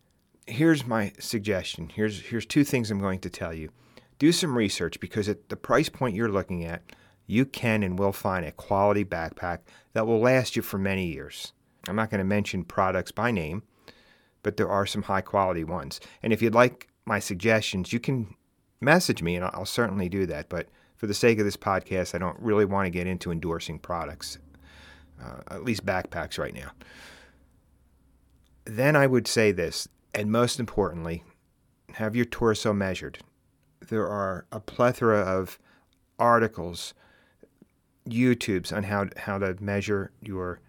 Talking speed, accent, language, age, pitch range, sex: 165 wpm, American, English, 40-59, 90-115 Hz, male